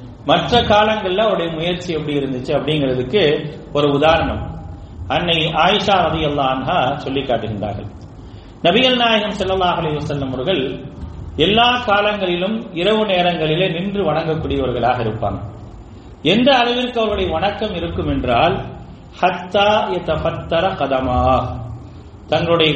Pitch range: 125-185 Hz